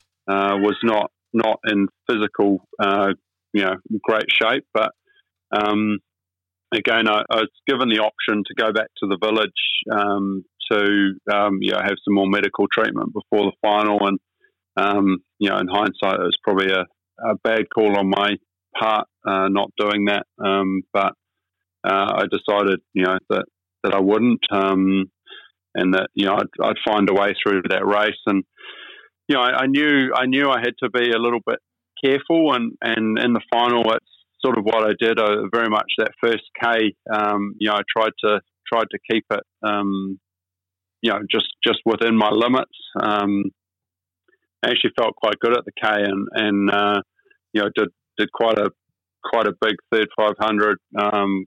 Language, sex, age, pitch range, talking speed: English, male, 30-49, 95-110 Hz, 185 wpm